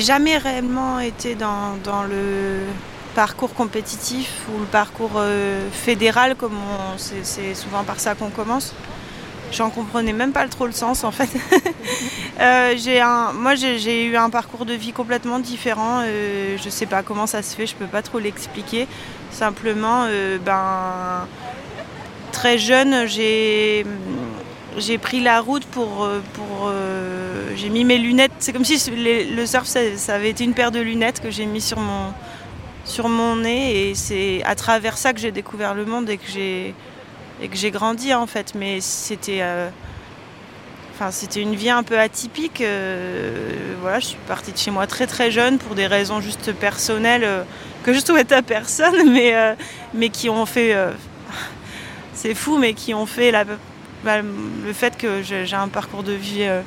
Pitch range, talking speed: 200-240 Hz, 170 wpm